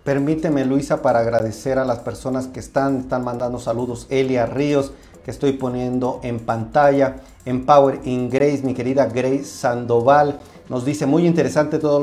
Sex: male